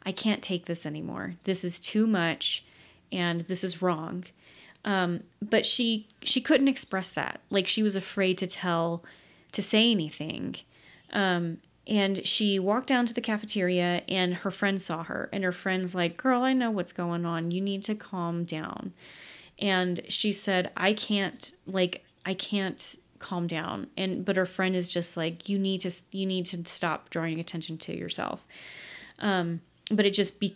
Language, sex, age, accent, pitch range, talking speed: English, female, 30-49, American, 175-210 Hz, 175 wpm